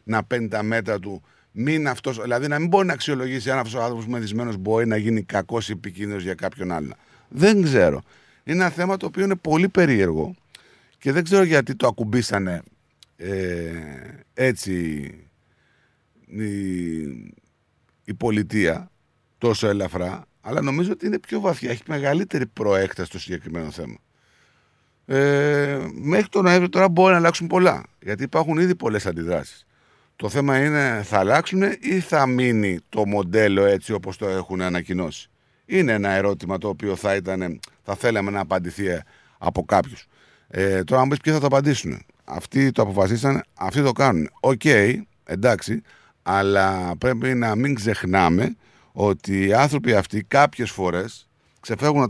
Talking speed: 150 wpm